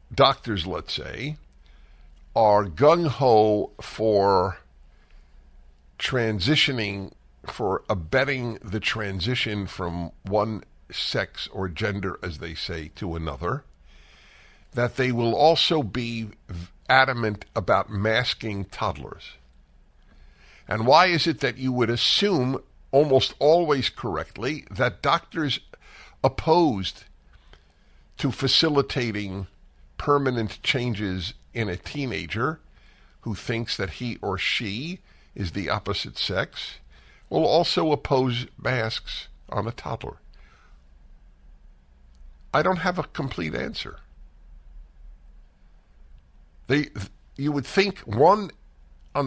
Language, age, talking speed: English, 60-79, 95 wpm